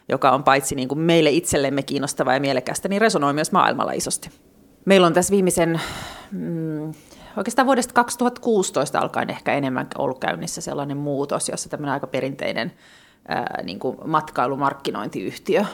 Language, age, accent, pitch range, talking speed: Finnish, 30-49, native, 140-170 Hz, 145 wpm